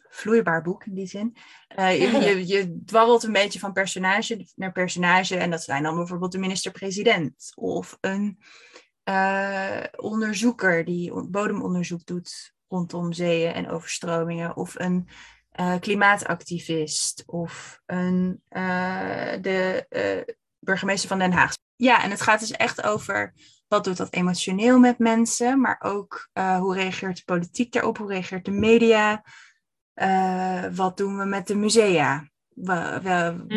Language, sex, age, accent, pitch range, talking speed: Dutch, female, 20-39, Dutch, 175-200 Hz, 145 wpm